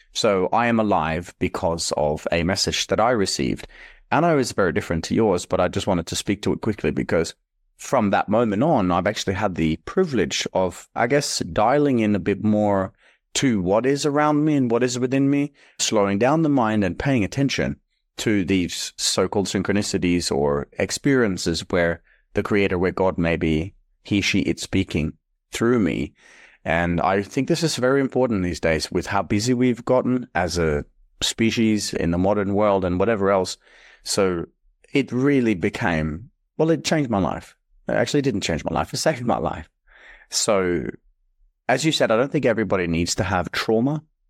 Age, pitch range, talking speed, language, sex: 30-49, 90-125 Hz, 185 wpm, English, male